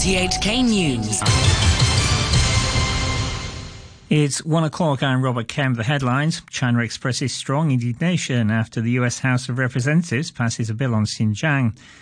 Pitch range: 115-140 Hz